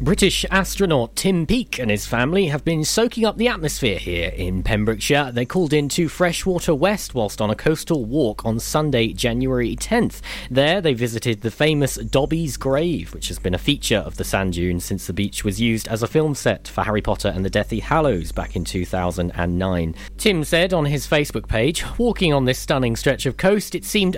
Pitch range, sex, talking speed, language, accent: 100-150 Hz, male, 200 wpm, English, British